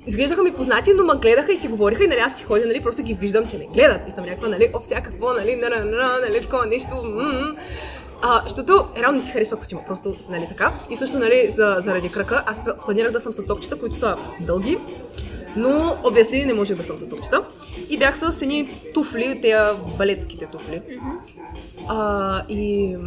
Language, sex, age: Bulgarian, female, 20-39